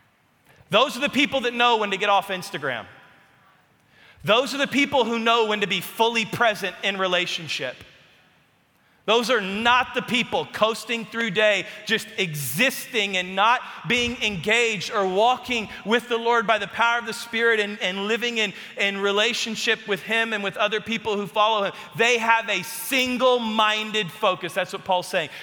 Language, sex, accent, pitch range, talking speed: English, male, American, 190-230 Hz, 170 wpm